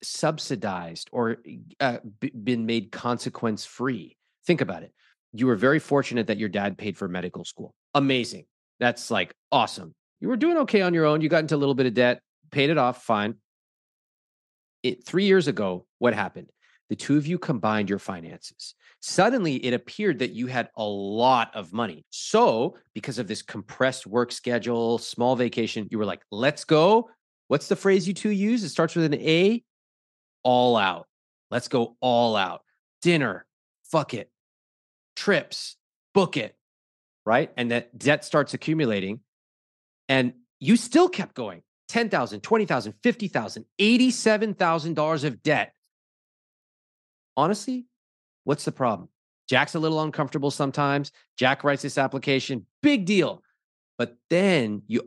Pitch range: 115-160 Hz